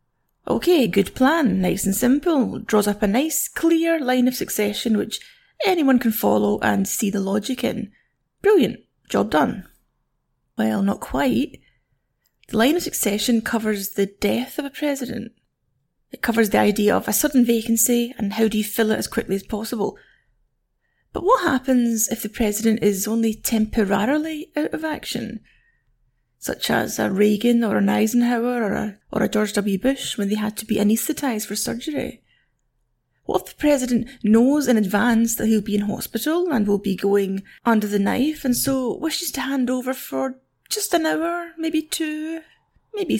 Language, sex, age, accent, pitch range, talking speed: English, female, 30-49, British, 210-275 Hz, 170 wpm